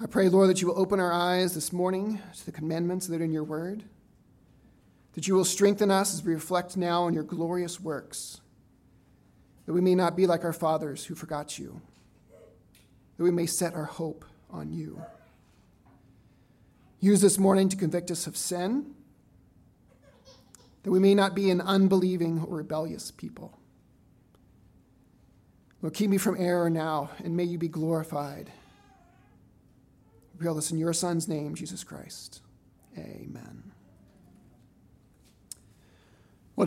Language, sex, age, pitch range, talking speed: English, male, 40-59, 160-190 Hz, 150 wpm